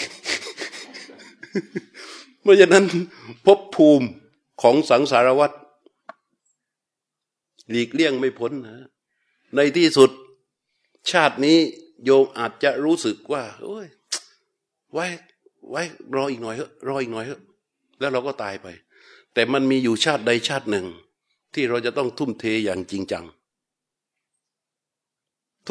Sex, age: male, 60-79